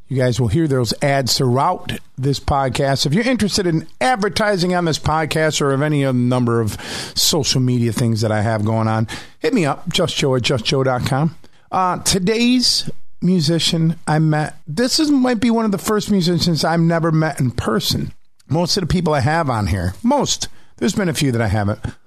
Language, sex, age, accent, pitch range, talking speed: English, male, 50-69, American, 120-165 Hz, 195 wpm